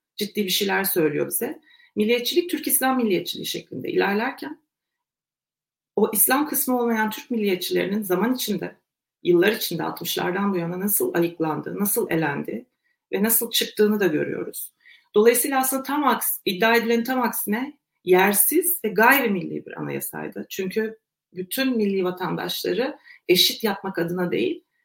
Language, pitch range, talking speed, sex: Turkish, 200-280 Hz, 130 wpm, female